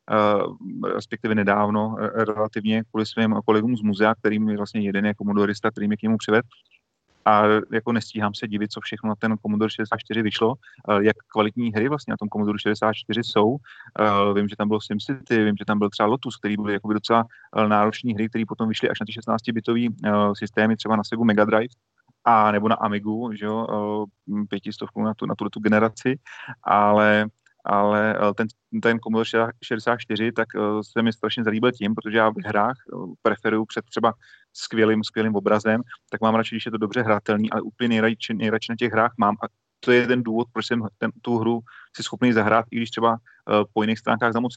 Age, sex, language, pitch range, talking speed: 30-49, male, Slovak, 105-115 Hz, 195 wpm